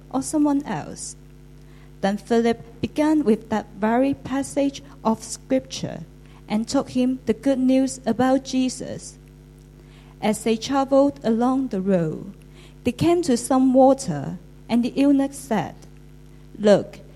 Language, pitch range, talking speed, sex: English, 170-260 Hz, 125 wpm, female